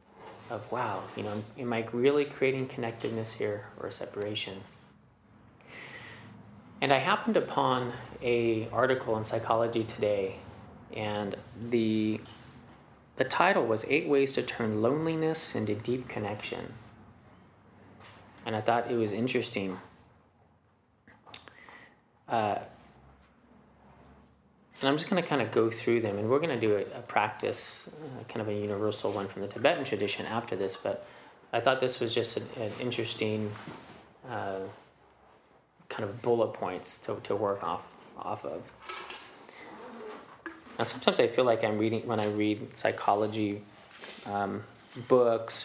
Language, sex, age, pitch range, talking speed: English, male, 30-49, 105-125 Hz, 135 wpm